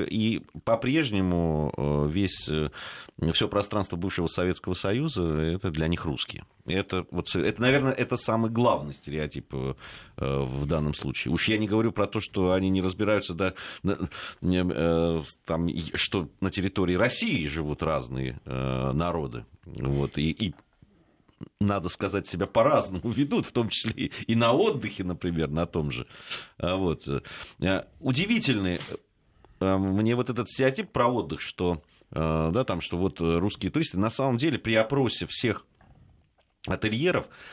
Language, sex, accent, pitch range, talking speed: Russian, male, native, 85-120 Hz, 135 wpm